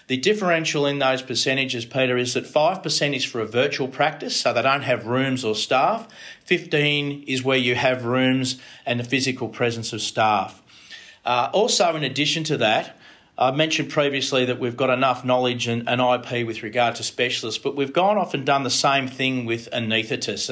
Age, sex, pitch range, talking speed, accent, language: 40-59, male, 120-140 Hz, 185 wpm, Australian, English